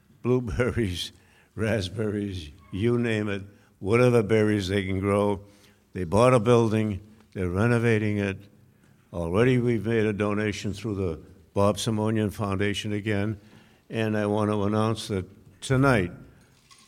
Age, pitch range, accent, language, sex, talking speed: 60-79, 90-110 Hz, American, English, male, 125 wpm